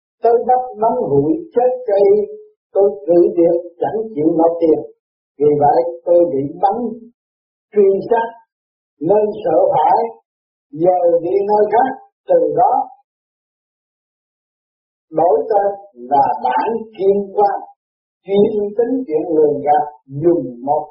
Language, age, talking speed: Vietnamese, 50-69, 120 wpm